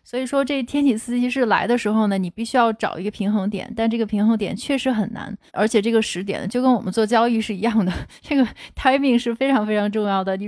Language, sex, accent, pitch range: Chinese, female, native, 195-245 Hz